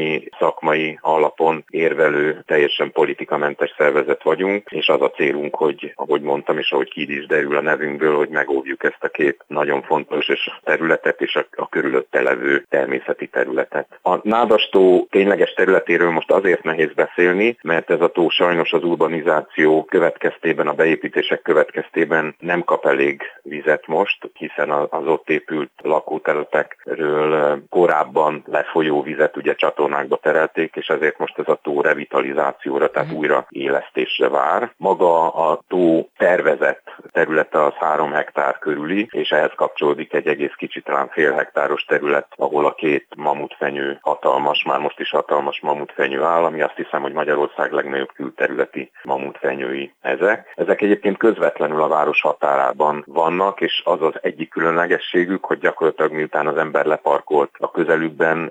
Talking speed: 145 wpm